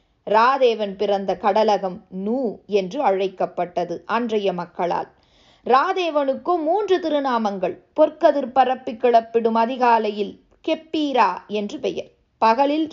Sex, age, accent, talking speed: female, 20-39, native, 90 wpm